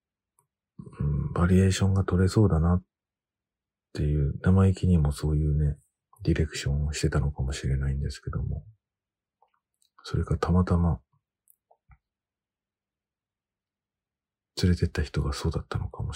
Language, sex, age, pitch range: Japanese, male, 40-59, 75-100 Hz